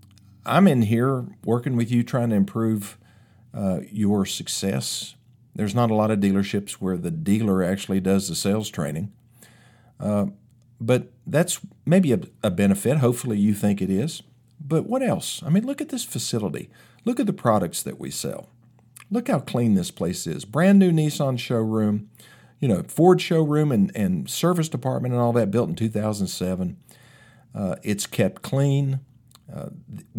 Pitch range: 105-130 Hz